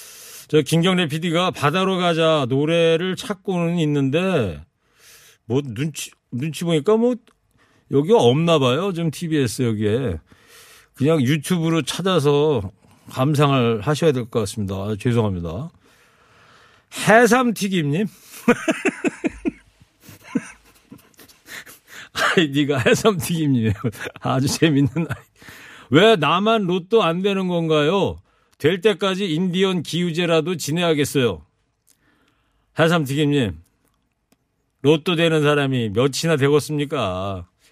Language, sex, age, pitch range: Korean, male, 40-59, 130-175 Hz